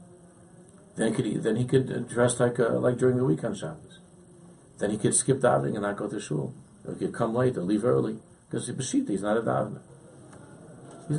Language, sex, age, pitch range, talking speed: English, male, 50-69, 100-155 Hz, 225 wpm